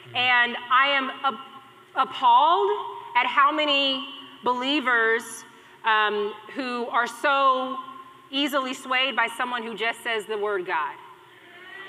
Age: 30-49